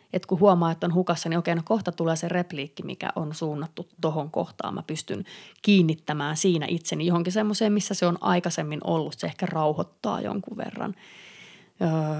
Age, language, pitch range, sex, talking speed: 30-49, Finnish, 165-195 Hz, female, 175 wpm